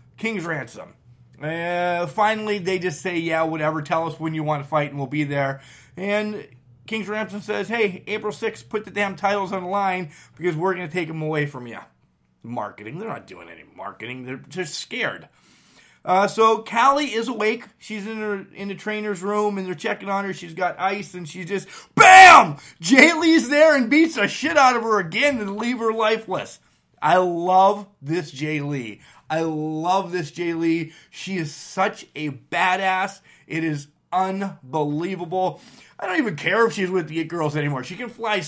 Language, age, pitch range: English, 30-49, 155-205 Hz